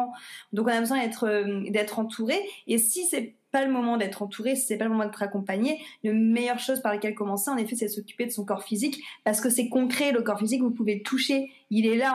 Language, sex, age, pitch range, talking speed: French, female, 20-39, 200-245 Hz, 250 wpm